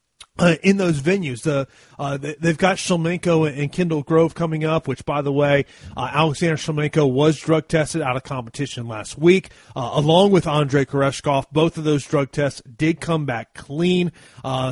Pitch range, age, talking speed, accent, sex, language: 145-175 Hz, 30-49, 180 wpm, American, male, English